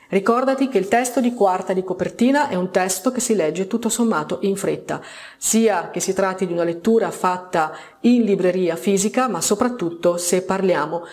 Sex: female